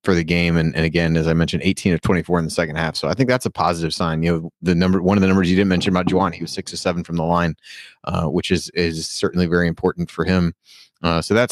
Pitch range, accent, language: 85-100 Hz, American, English